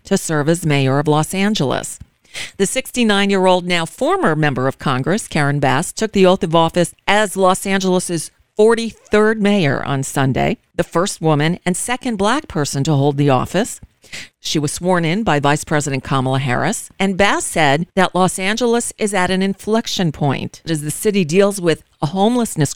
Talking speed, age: 175 wpm, 40-59